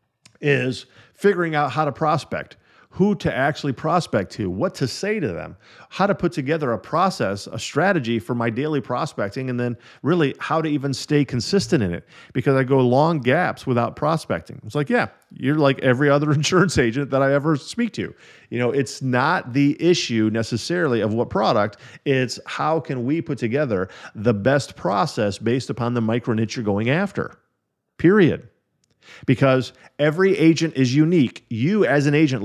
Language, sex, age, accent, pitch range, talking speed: English, male, 50-69, American, 120-155 Hz, 180 wpm